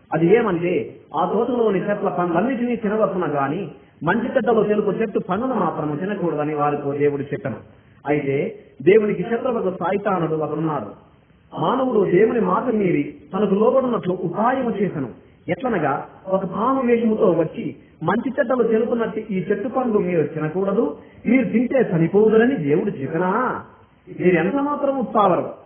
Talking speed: 50 wpm